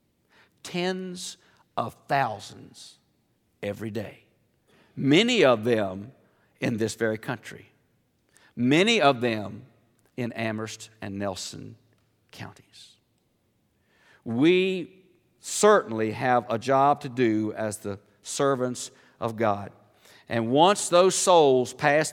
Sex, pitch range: male, 110-135 Hz